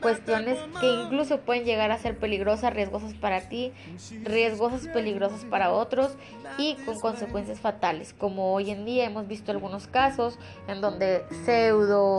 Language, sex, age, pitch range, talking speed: Spanish, female, 20-39, 200-250 Hz, 150 wpm